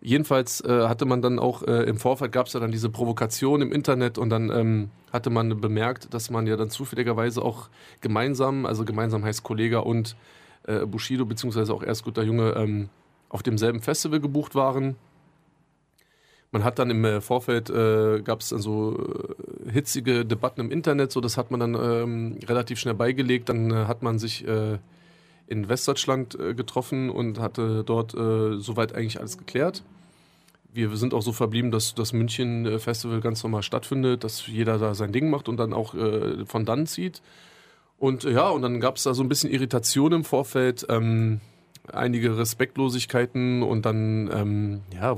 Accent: German